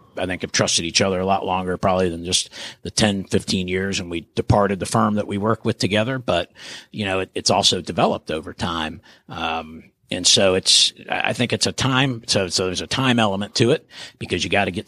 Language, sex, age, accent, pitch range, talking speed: English, male, 50-69, American, 85-100 Hz, 225 wpm